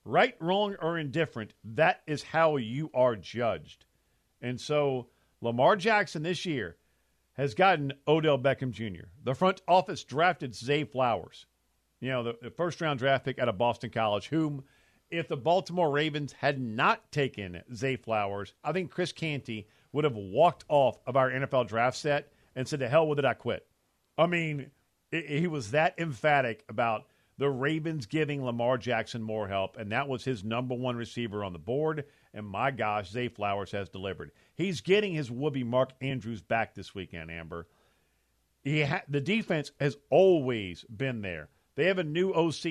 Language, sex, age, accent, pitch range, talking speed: English, male, 50-69, American, 115-155 Hz, 175 wpm